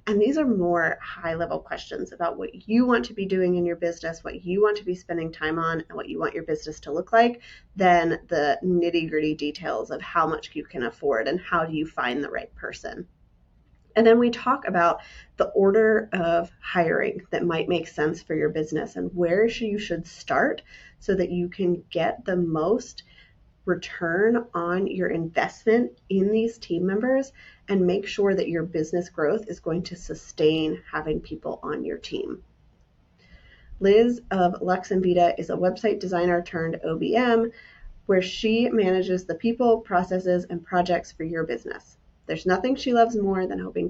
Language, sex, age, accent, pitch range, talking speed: English, female, 30-49, American, 165-210 Hz, 180 wpm